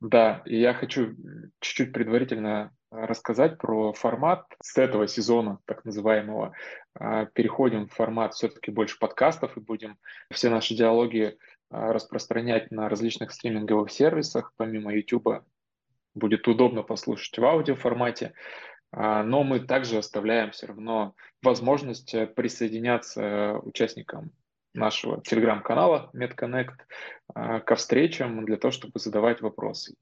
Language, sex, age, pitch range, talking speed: Russian, male, 20-39, 110-120 Hz, 110 wpm